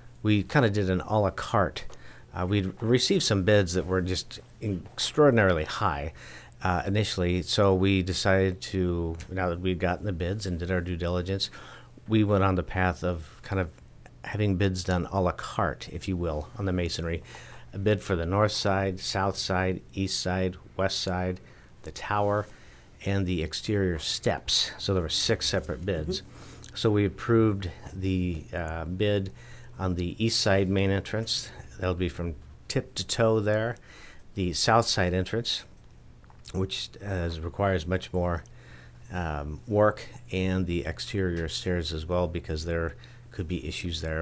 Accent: American